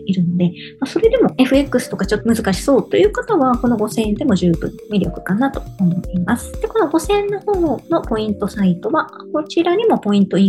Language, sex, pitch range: Japanese, male, 190-310 Hz